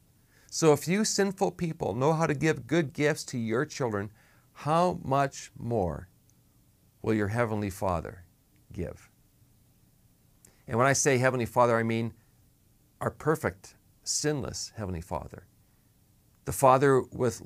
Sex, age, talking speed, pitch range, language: male, 50-69, 130 wpm, 105-135 Hz, English